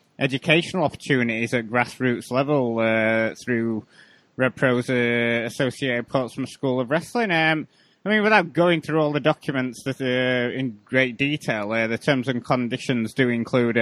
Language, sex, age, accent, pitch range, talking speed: English, male, 20-39, British, 115-140 Hz, 155 wpm